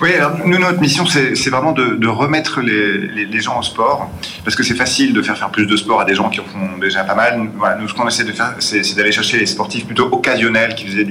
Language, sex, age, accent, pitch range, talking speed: French, male, 30-49, French, 100-130 Hz, 285 wpm